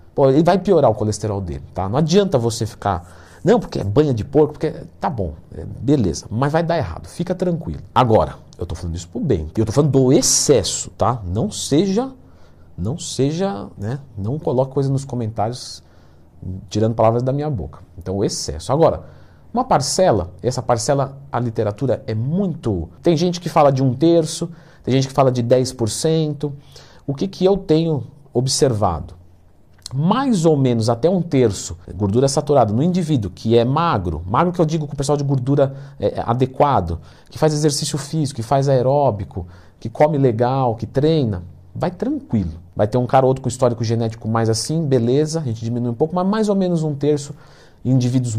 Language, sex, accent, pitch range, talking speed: Portuguese, male, Brazilian, 105-150 Hz, 185 wpm